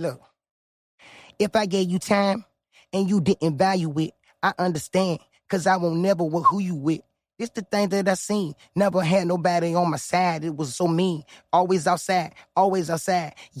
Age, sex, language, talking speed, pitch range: 20-39, male, English, 185 wpm, 180-210 Hz